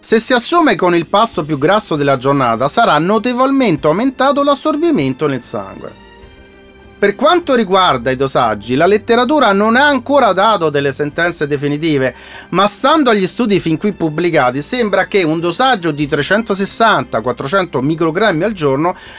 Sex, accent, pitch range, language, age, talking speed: male, native, 135-220 Hz, Italian, 40-59, 145 wpm